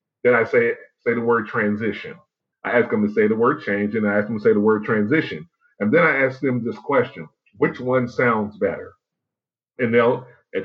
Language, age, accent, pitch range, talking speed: English, 40-59, American, 105-130 Hz, 215 wpm